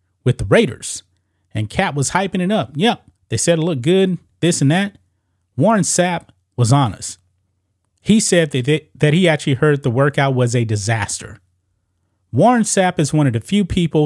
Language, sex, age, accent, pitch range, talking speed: English, male, 30-49, American, 100-155 Hz, 180 wpm